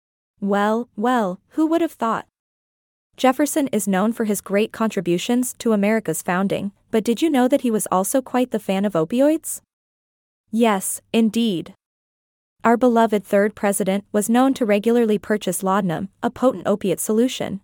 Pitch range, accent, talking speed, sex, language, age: 195-245 Hz, American, 155 wpm, female, English, 20-39